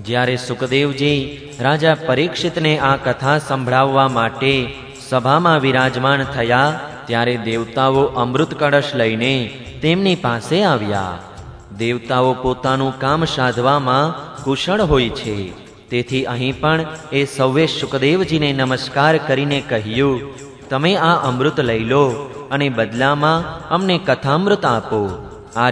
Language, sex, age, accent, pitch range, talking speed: Gujarati, male, 30-49, native, 125-150 Hz, 50 wpm